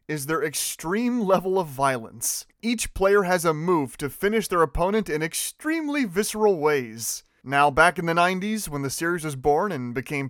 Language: English